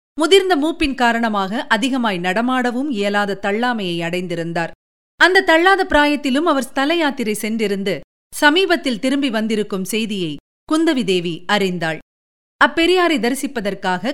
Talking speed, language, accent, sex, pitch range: 100 wpm, Tamil, native, female, 220-295 Hz